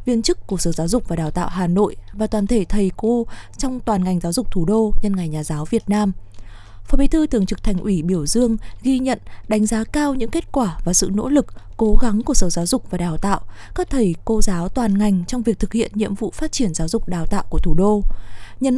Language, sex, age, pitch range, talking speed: Vietnamese, female, 20-39, 190-240 Hz, 260 wpm